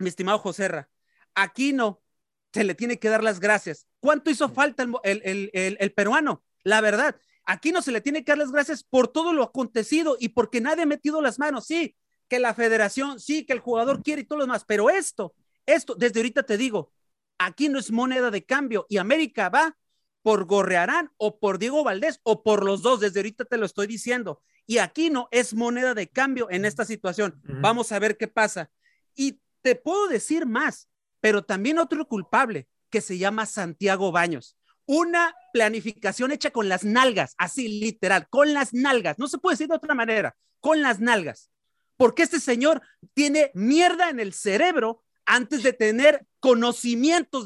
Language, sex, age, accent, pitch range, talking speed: Spanish, male, 40-59, Mexican, 210-290 Hz, 190 wpm